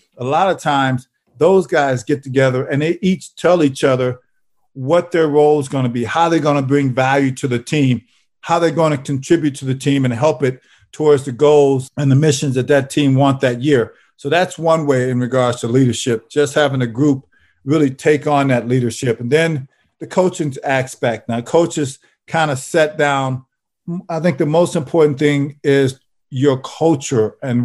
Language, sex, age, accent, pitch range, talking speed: English, male, 50-69, American, 130-155 Hz, 195 wpm